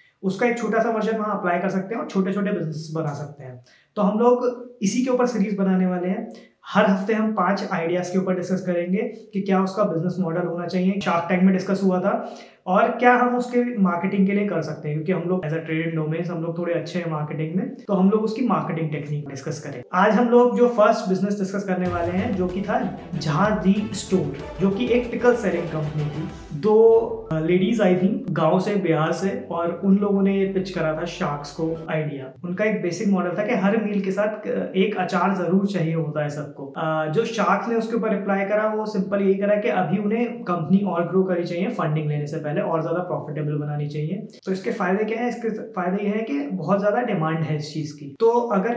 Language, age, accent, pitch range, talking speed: Hindi, 20-39, native, 165-210 Hz, 205 wpm